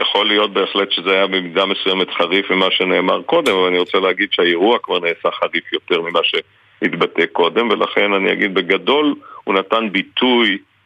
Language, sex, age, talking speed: Hebrew, male, 50-69, 165 wpm